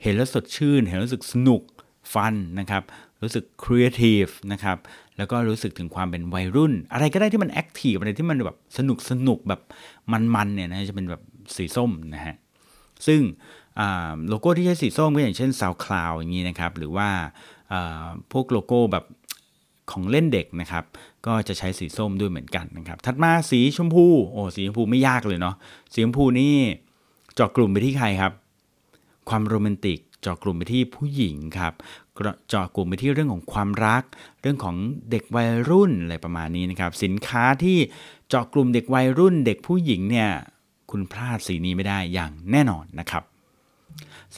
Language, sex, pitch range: Thai, male, 90-125 Hz